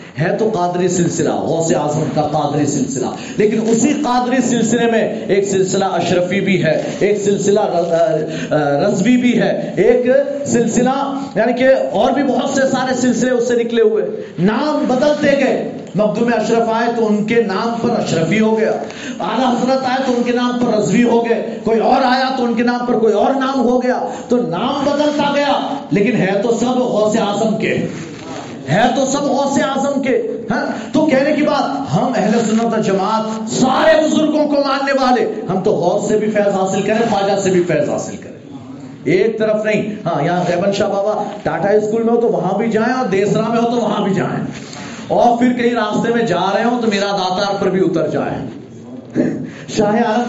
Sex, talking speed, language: male, 190 wpm, Urdu